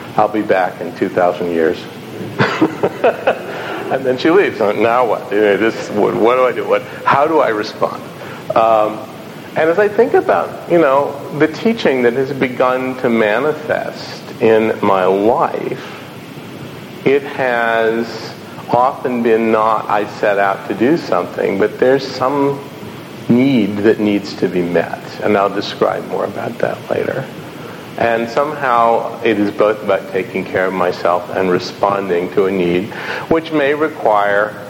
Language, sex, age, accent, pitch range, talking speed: English, male, 50-69, American, 100-120 Hz, 150 wpm